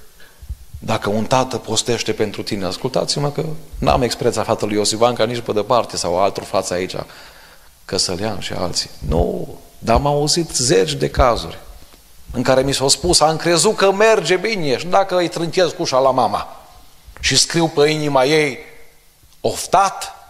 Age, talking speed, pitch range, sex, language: 40-59, 160 wpm, 95-135 Hz, male, Romanian